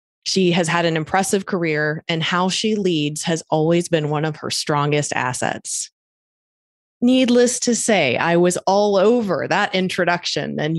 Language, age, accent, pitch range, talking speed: English, 20-39, American, 155-185 Hz, 155 wpm